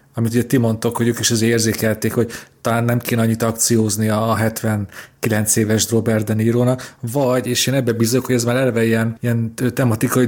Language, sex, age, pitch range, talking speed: Hungarian, male, 40-59, 115-130 Hz, 195 wpm